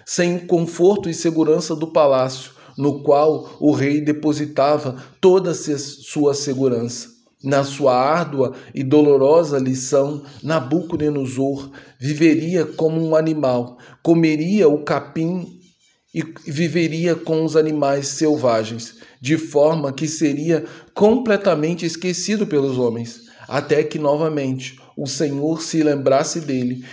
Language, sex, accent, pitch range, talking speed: Portuguese, male, Brazilian, 140-165 Hz, 115 wpm